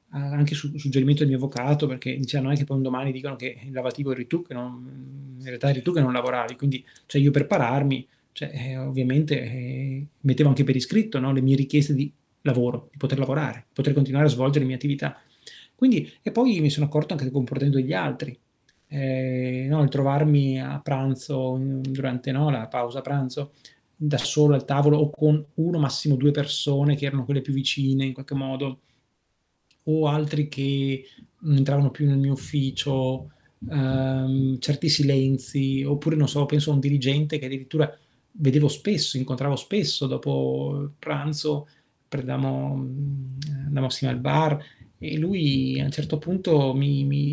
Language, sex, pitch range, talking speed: Italian, male, 130-150 Hz, 170 wpm